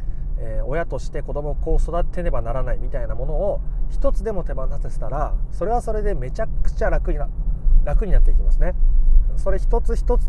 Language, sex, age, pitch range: Japanese, male, 30-49, 130-170 Hz